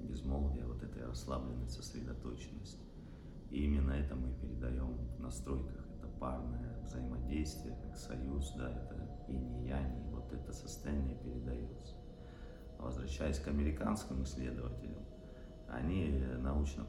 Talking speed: 120 wpm